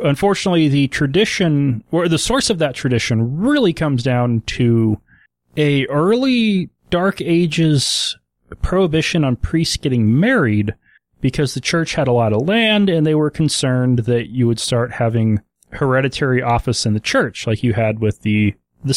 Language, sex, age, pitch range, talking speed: English, male, 30-49, 115-165 Hz, 160 wpm